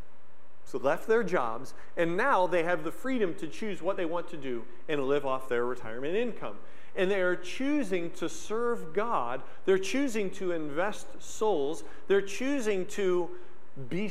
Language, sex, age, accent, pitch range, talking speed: English, male, 40-59, American, 155-220 Hz, 160 wpm